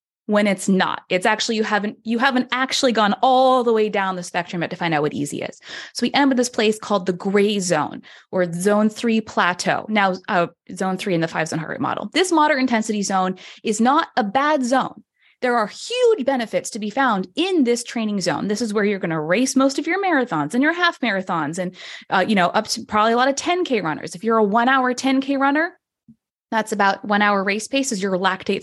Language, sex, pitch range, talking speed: English, female, 185-255 Hz, 235 wpm